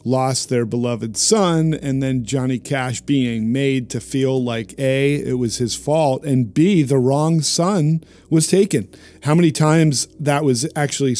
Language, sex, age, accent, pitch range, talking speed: English, male, 40-59, American, 120-145 Hz, 165 wpm